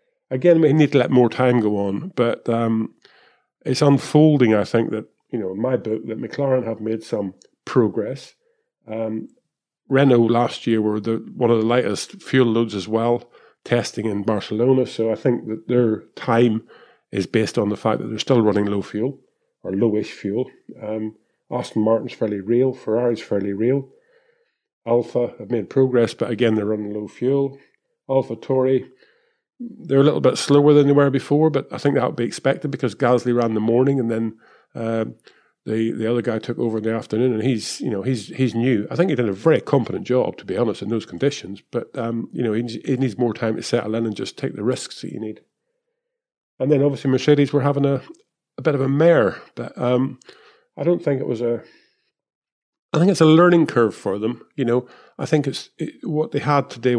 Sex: male